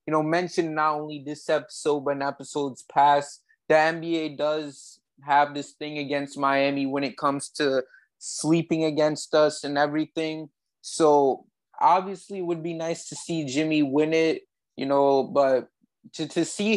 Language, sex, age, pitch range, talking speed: English, male, 20-39, 145-165 Hz, 160 wpm